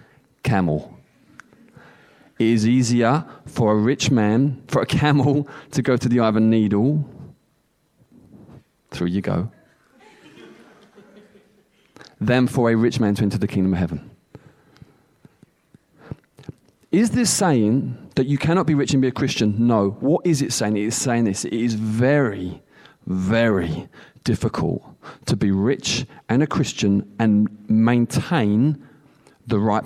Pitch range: 110-150 Hz